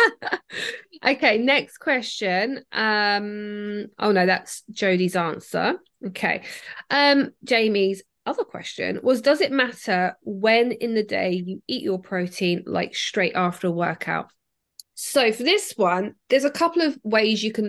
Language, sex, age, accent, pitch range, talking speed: English, female, 20-39, British, 185-245 Hz, 145 wpm